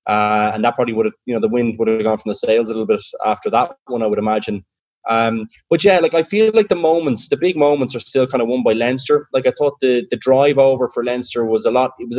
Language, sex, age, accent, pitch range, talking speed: English, male, 20-39, Irish, 110-135 Hz, 285 wpm